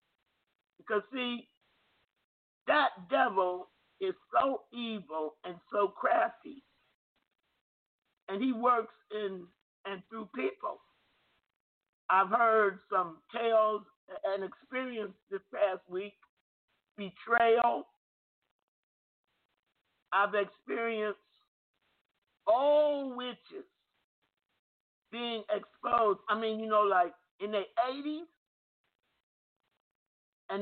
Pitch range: 195-255 Hz